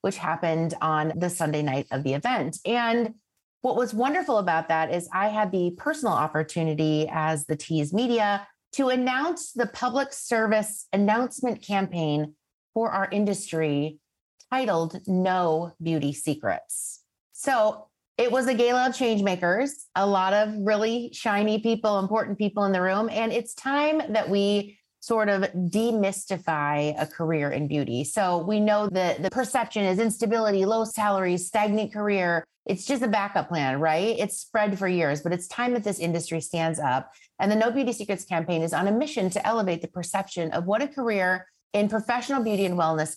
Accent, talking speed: American, 170 wpm